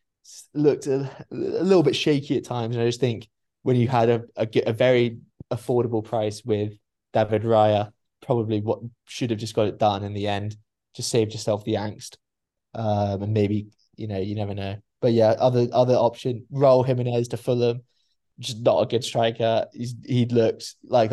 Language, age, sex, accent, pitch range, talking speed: English, 20-39, male, British, 105-120 Hz, 190 wpm